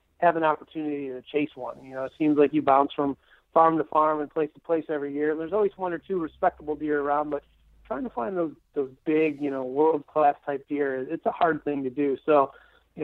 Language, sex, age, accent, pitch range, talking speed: English, male, 30-49, American, 135-155 Hz, 235 wpm